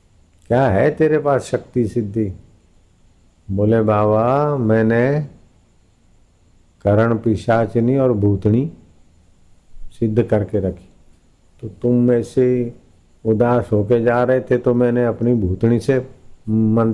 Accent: native